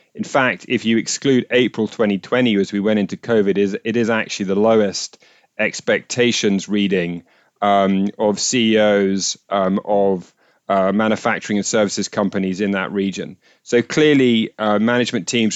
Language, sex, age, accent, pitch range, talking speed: English, male, 30-49, British, 100-120 Hz, 145 wpm